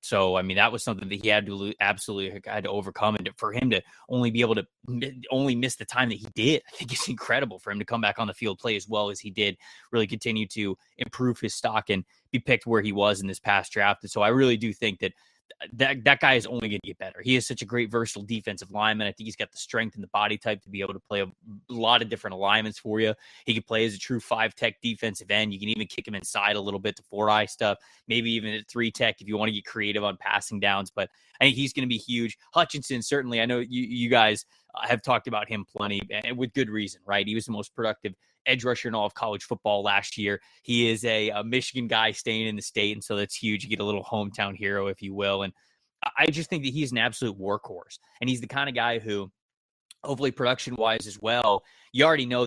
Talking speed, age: 260 wpm, 20-39